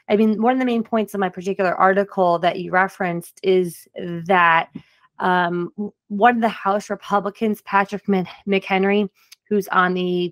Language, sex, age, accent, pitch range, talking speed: English, female, 20-39, American, 180-210 Hz, 155 wpm